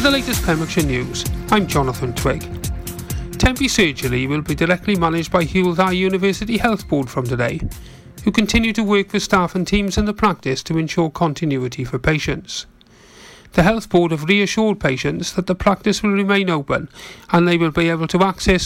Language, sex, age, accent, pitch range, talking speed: English, male, 40-59, British, 150-195 Hz, 180 wpm